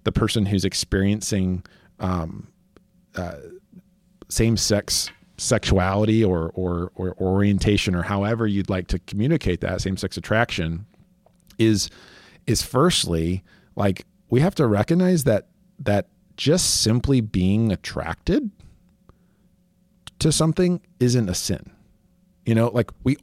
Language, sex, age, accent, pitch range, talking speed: English, male, 40-59, American, 95-135 Hz, 120 wpm